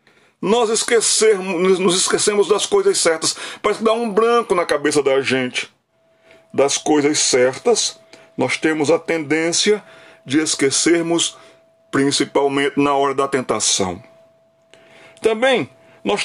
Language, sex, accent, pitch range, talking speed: Portuguese, male, Brazilian, 145-210 Hz, 115 wpm